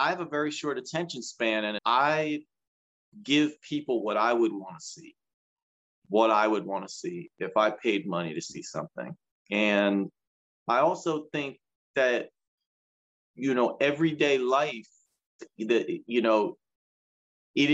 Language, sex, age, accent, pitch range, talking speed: English, male, 30-49, American, 105-145 Hz, 145 wpm